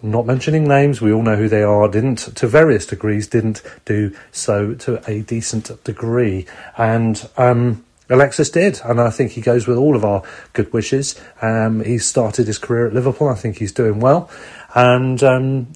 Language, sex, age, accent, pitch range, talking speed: English, male, 30-49, British, 110-130 Hz, 185 wpm